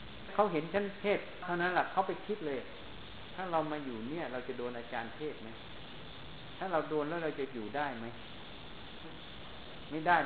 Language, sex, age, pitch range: Thai, male, 60-79, 120-170 Hz